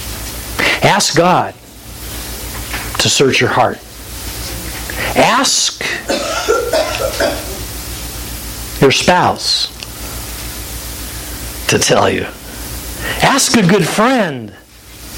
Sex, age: male, 60-79